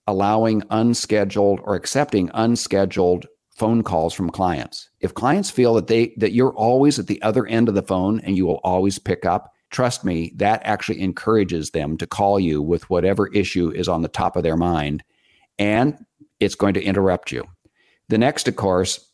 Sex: male